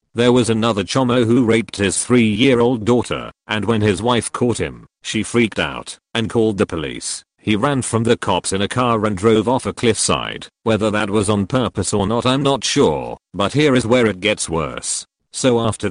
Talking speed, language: 210 wpm, English